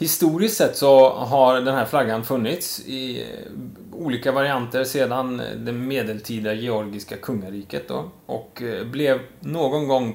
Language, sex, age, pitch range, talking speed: Swedish, male, 20-39, 110-135 Hz, 125 wpm